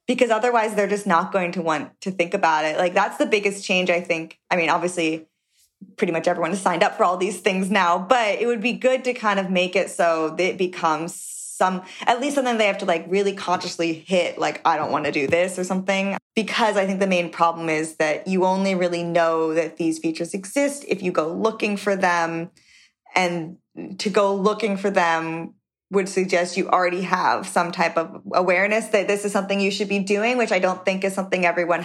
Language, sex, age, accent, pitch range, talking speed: English, female, 20-39, American, 175-205 Hz, 220 wpm